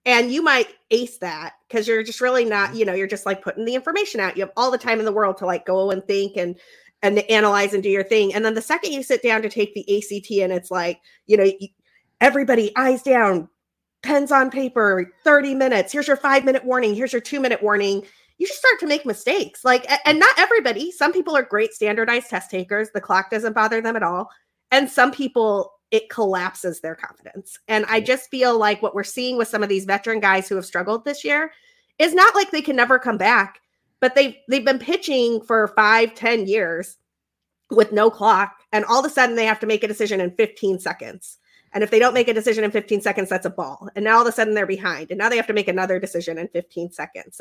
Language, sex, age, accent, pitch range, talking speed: English, female, 30-49, American, 200-255 Hz, 235 wpm